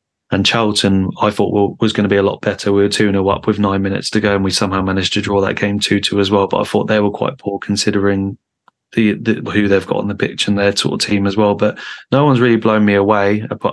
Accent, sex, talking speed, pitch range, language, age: British, male, 270 wpm, 100-105 Hz, English, 20-39